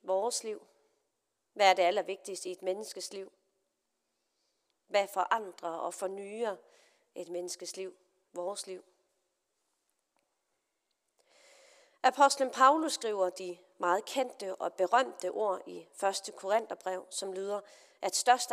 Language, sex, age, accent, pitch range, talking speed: Danish, female, 30-49, native, 180-245 Hz, 115 wpm